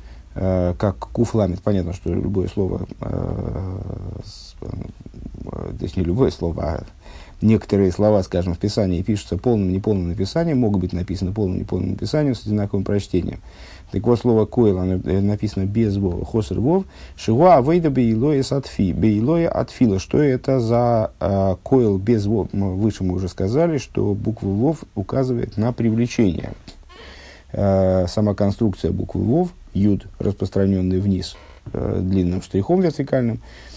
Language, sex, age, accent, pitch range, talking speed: Russian, male, 50-69, native, 95-115 Hz, 130 wpm